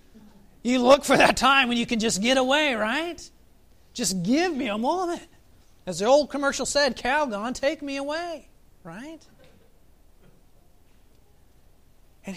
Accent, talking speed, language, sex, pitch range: American, 135 wpm, English, male, 175-265 Hz